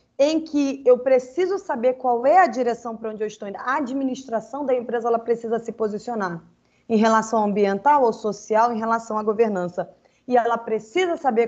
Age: 20-39